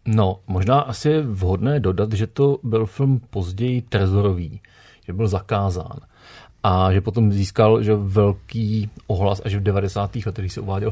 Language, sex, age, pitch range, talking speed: Czech, male, 40-59, 100-125 Hz, 160 wpm